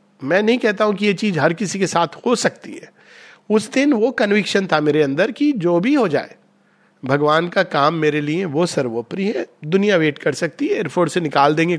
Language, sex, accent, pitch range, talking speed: Hindi, male, native, 150-210 Hz, 80 wpm